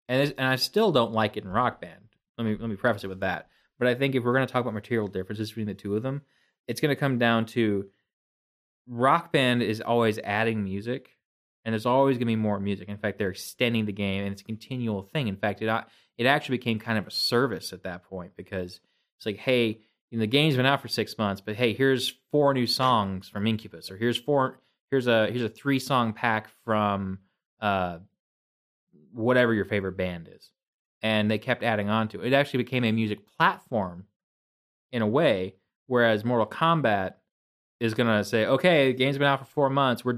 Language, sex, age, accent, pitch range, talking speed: English, male, 20-39, American, 100-125 Hz, 220 wpm